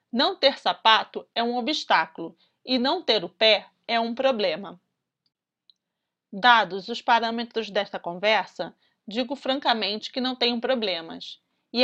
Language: Portuguese